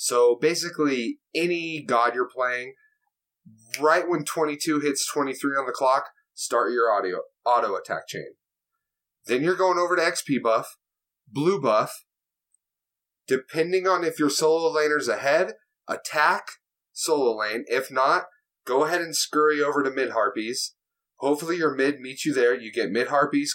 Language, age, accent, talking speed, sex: English, 30-49, American, 145 wpm, male